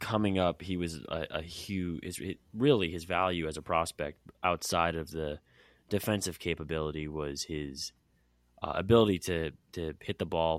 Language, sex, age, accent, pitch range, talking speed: English, male, 20-39, American, 75-95 Hz, 155 wpm